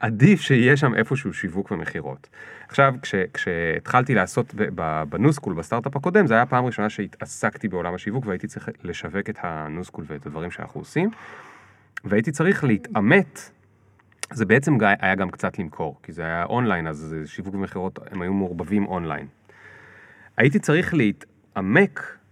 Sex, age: male, 30-49